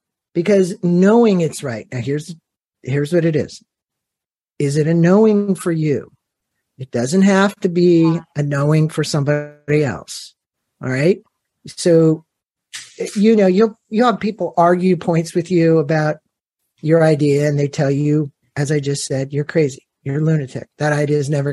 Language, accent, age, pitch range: English, American, 50-69, 150-190 Hz